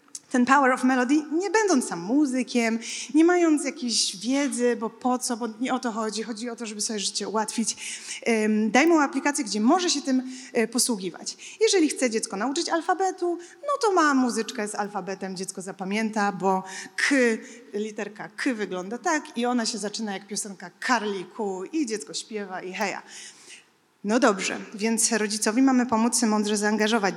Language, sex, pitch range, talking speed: Polish, female, 205-270 Hz, 165 wpm